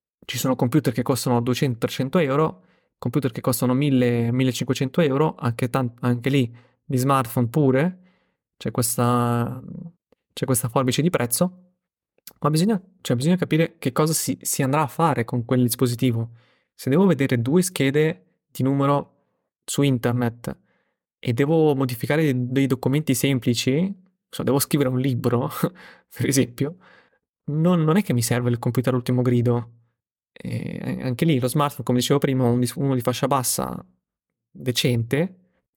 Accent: native